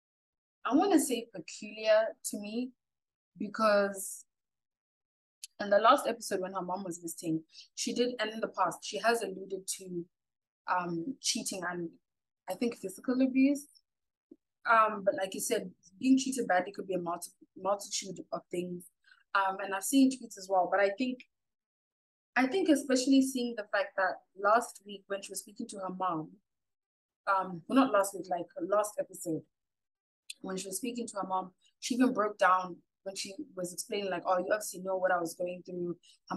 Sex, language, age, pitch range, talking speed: female, English, 20-39, 185-240 Hz, 180 wpm